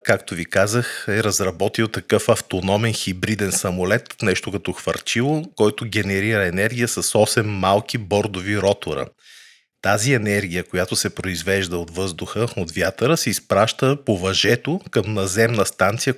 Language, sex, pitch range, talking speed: Bulgarian, male, 95-120 Hz, 135 wpm